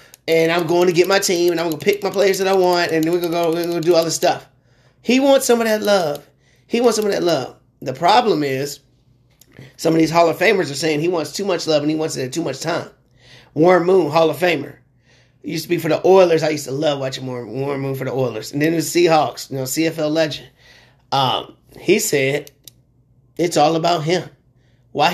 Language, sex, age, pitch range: English, male, 30-49, 130-175 Hz